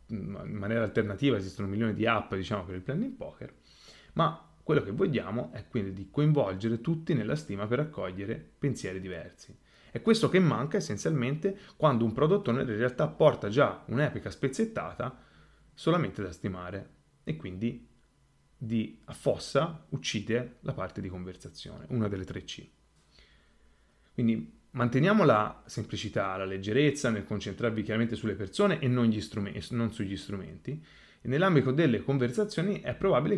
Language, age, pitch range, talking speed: Italian, 30-49, 100-145 Hz, 140 wpm